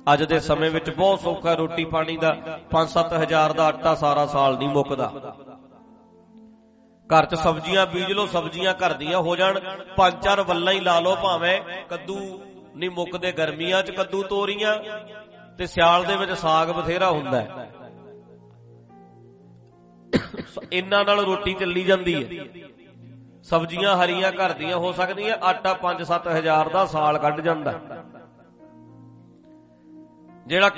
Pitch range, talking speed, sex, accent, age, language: 160-200 Hz, 90 wpm, male, Indian, 40-59, English